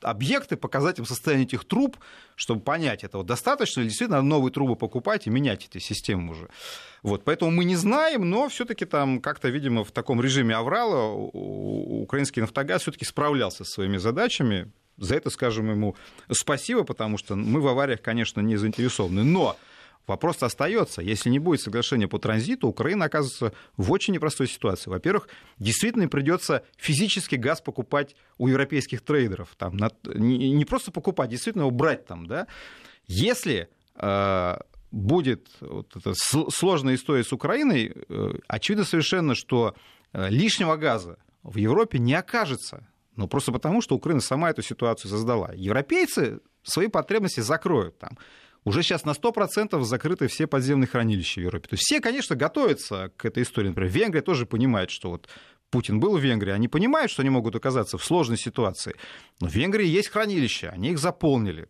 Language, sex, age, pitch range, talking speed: Russian, male, 30-49, 110-160 Hz, 160 wpm